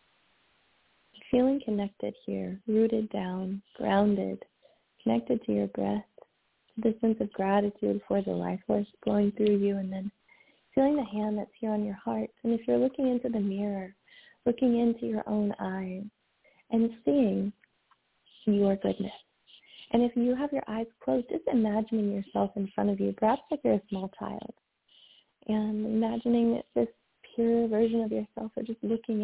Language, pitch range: English, 195-230 Hz